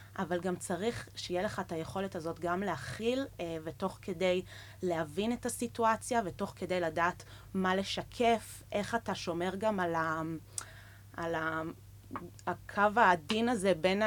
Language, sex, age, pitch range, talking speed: English, female, 30-49, 170-210 Hz, 130 wpm